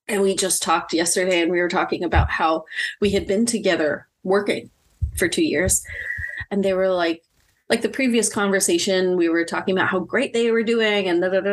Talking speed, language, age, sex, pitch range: 210 wpm, English, 30-49, female, 175-225 Hz